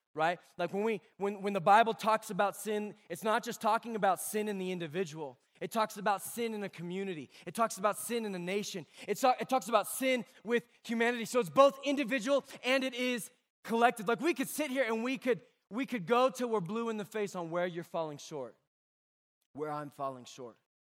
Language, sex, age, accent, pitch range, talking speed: English, male, 20-39, American, 155-210 Hz, 215 wpm